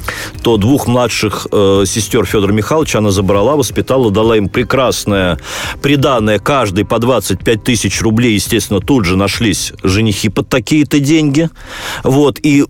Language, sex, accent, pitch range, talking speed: Russian, male, native, 105-150 Hz, 130 wpm